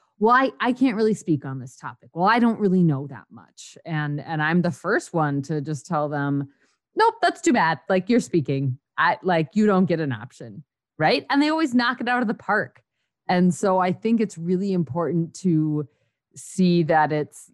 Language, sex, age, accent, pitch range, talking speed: English, female, 30-49, American, 145-185 Hz, 210 wpm